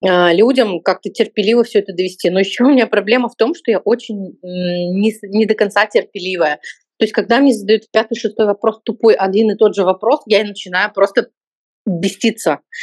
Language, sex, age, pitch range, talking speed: Russian, female, 30-49, 200-235 Hz, 185 wpm